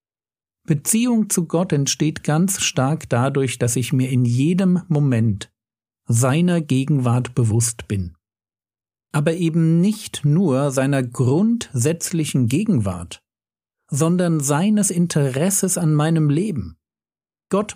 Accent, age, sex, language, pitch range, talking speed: German, 50-69, male, German, 115-175 Hz, 105 wpm